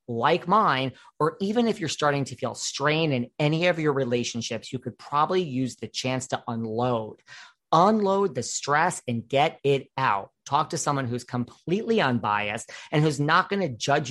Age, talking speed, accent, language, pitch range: 40-59, 180 wpm, American, English, 125-160 Hz